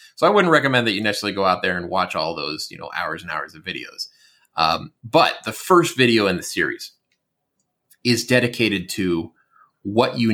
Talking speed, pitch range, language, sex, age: 195 wpm, 95-120 Hz, English, male, 20-39